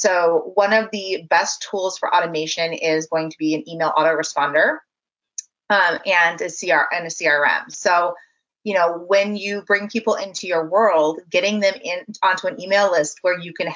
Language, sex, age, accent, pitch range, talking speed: English, female, 30-49, American, 165-200 Hz, 185 wpm